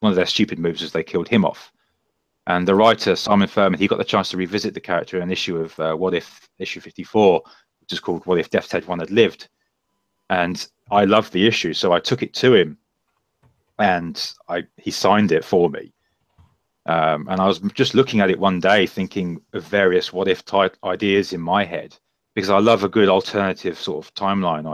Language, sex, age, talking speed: English, male, 30-49, 215 wpm